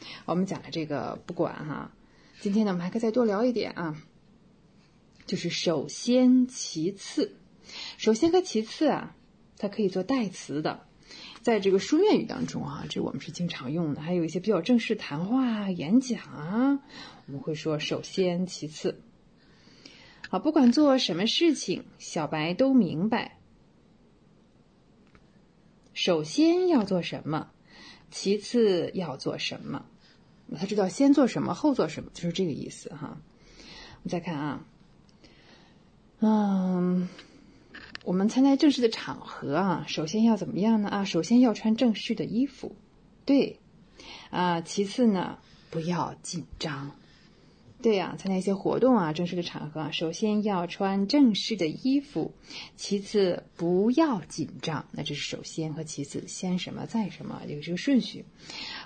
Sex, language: female, English